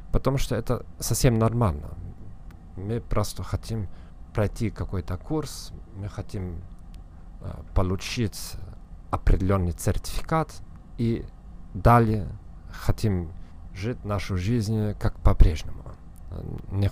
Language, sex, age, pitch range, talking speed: Russian, male, 50-69, 85-110 Hz, 90 wpm